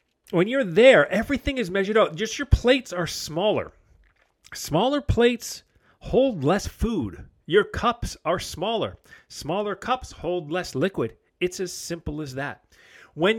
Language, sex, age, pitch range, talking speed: English, male, 40-59, 155-220 Hz, 145 wpm